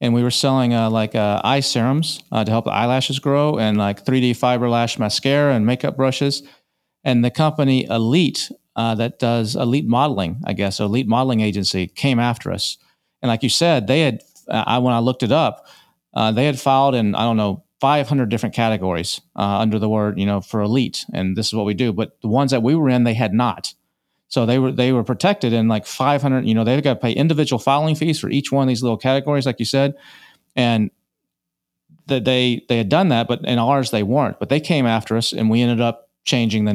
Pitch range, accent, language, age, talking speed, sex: 110-135 Hz, American, English, 40-59, 225 wpm, male